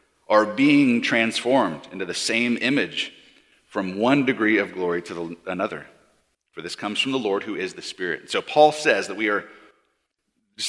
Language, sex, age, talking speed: English, male, 30-49, 175 wpm